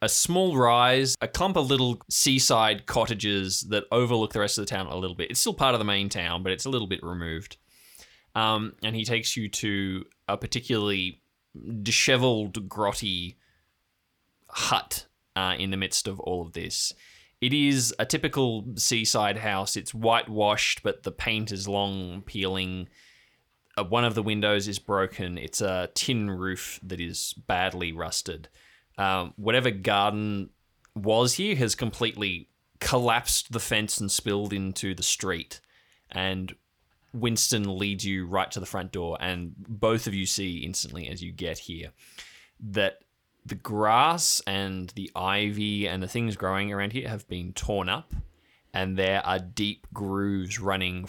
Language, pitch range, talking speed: English, 95-115 Hz, 160 wpm